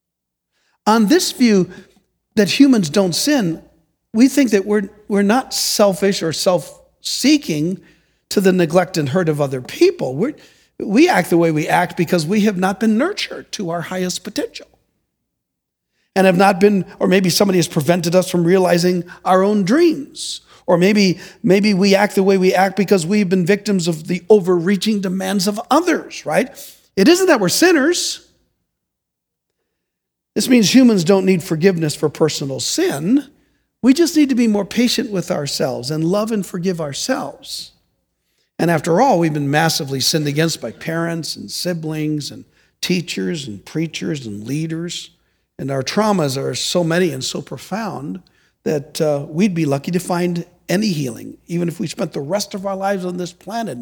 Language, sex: English, male